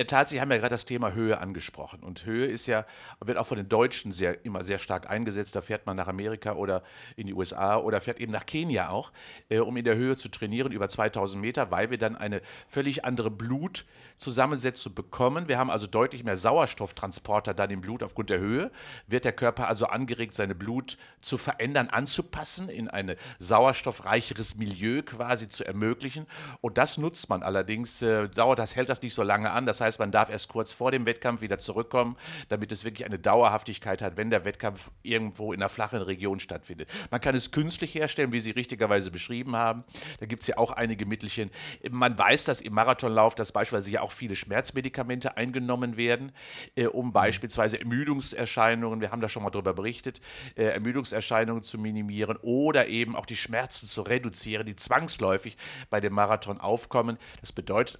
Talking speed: 185 wpm